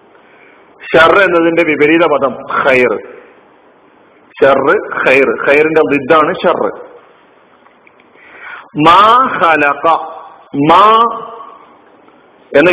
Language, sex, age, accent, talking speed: Malayalam, male, 50-69, native, 50 wpm